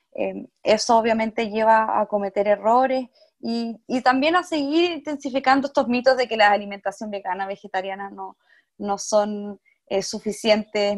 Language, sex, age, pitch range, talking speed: Romanian, female, 20-39, 200-235 Hz, 140 wpm